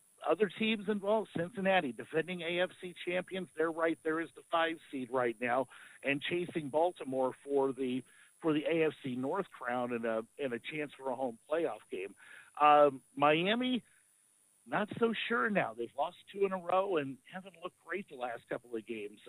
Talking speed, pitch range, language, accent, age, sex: 175 wpm, 135-180 Hz, English, American, 50-69, male